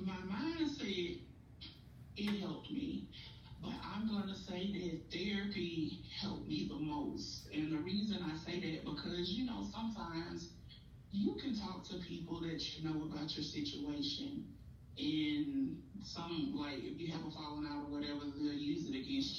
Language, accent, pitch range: English, American, 150-195 Hz